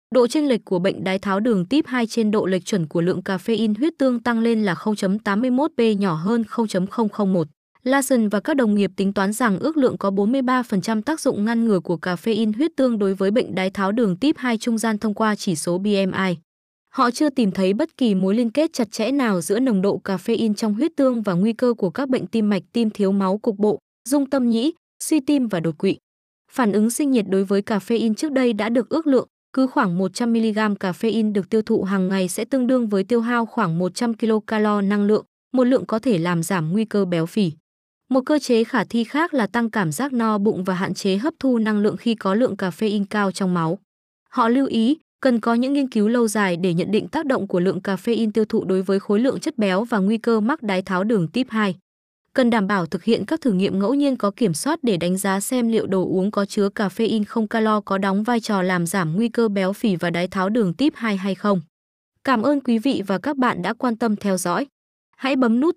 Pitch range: 195-245 Hz